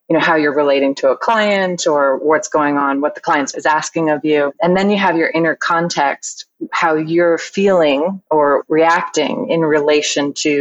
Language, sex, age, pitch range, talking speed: English, female, 20-39, 145-170 Hz, 190 wpm